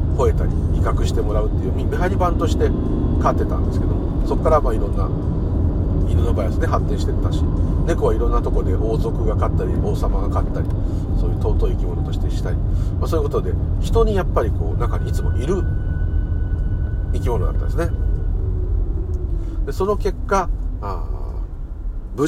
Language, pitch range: Japanese, 80-100 Hz